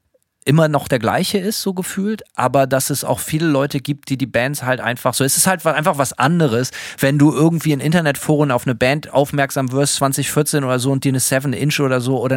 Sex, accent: male, German